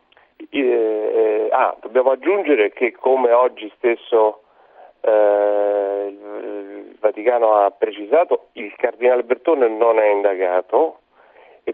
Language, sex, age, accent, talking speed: Italian, male, 40-59, native, 105 wpm